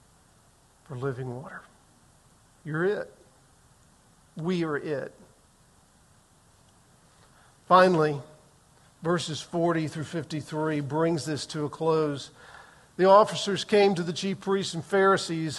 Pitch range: 165-210 Hz